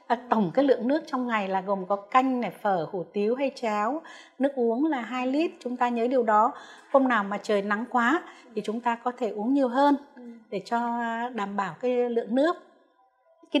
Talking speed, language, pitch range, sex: 215 wpm, Vietnamese, 215-265 Hz, female